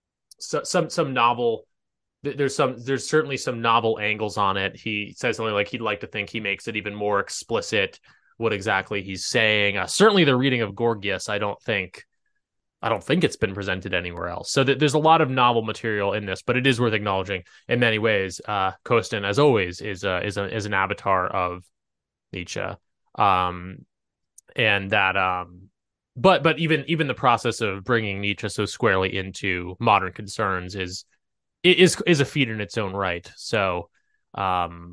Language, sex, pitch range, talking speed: English, male, 95-125 Hz, 185 wpm